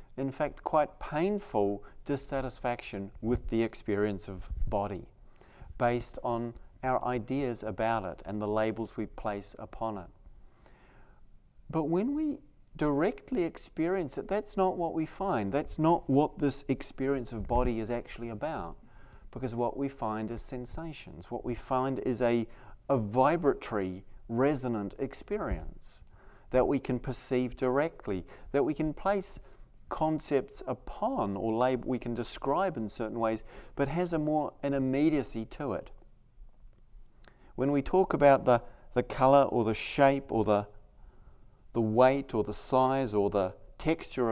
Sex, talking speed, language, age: male, 145 wpm, English, 40-59